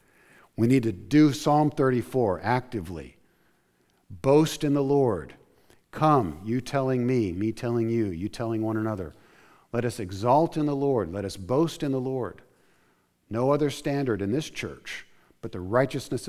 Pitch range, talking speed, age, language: 90-120 Hz, 160 wpm, 50-69, English